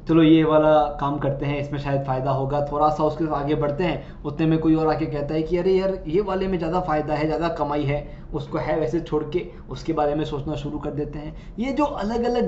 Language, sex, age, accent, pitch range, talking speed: Hindi, male, 20-39, native, 150-200 Hz, 255 wpm